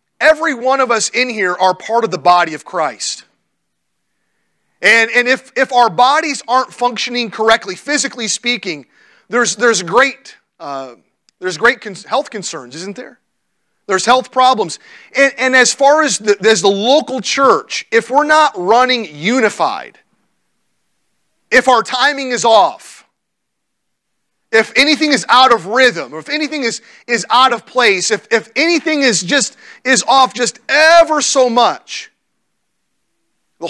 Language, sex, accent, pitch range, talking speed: English, male, American, 175-260 Hz, 150 wpm